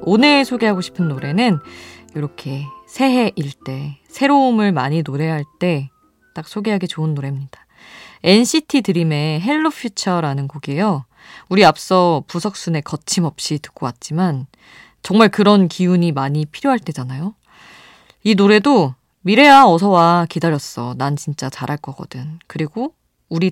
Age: 20-39